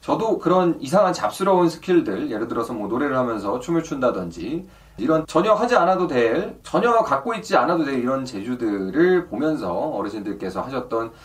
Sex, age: male, 30-49